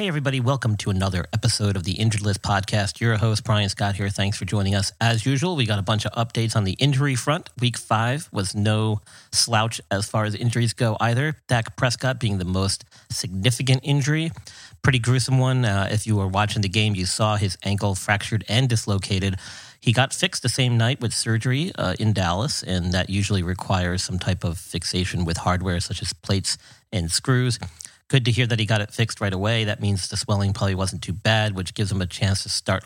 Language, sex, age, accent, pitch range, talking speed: English, male, 40-59, American, 100-120 Hz, 215 wpm